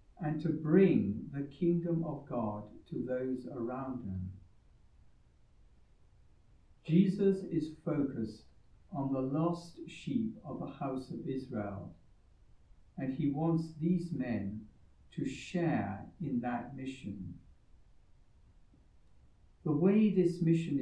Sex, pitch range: male, 110-165 Hz